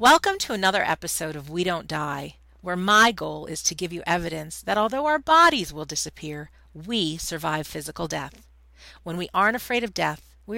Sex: female